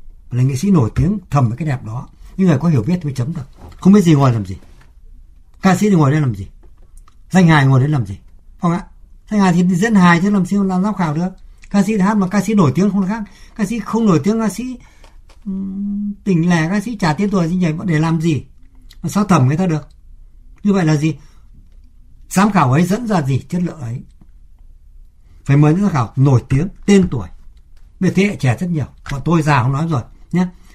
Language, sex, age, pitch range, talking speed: Vietnamese, male, 60-79, 120-185 Hz, 240 wpm